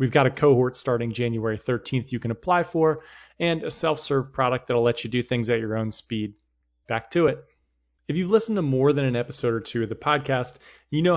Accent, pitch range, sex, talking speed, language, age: American, 110-135 Hz, male, 225 wpm, English, 30-49